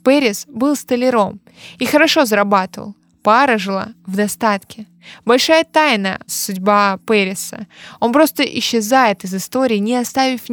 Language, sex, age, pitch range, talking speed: Russian, female, 20-39, 200-250 Hz, 125 wpm